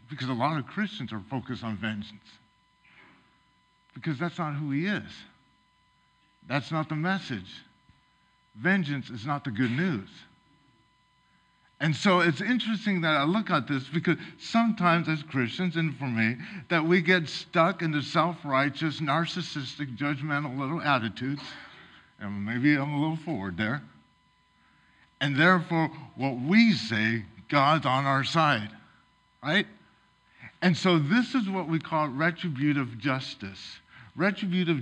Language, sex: English, male